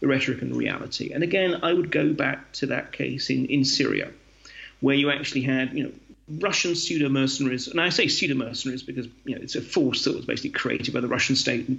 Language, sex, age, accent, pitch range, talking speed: English, male, 40-59, British, 130-195 Hz, 235 wpm